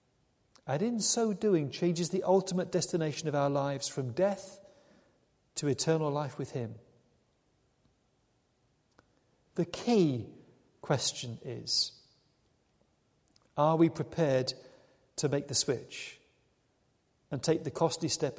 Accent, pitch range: British, 130-170 Hz